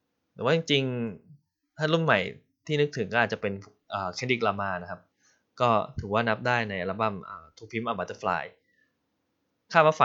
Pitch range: 110-145 Hz